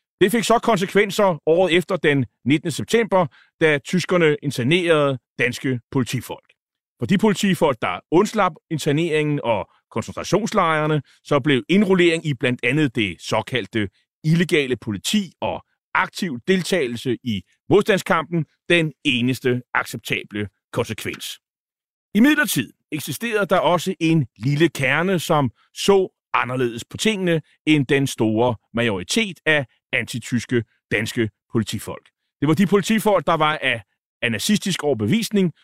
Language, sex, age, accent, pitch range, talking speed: Danish, male, 30-49, native, 130-190 Hz, 120 wpm